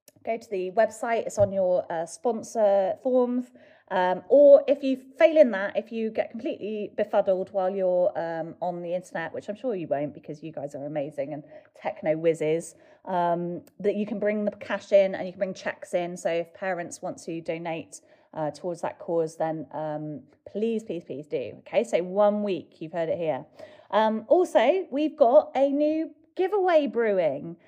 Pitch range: 180-255 Hz